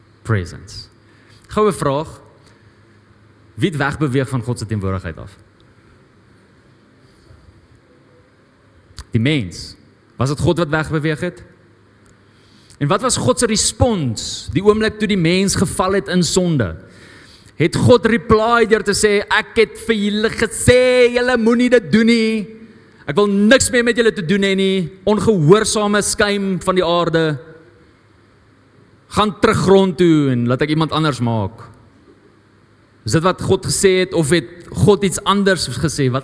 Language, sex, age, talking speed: English, male, 30-49, 135 wpm